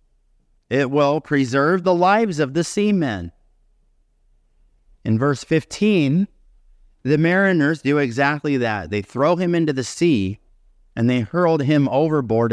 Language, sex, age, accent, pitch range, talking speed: English, male, 30-49, American, 105-155 Hz, 130 wpm